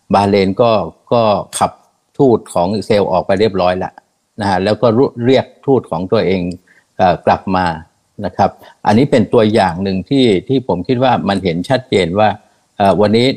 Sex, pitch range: male, 90-115 Hz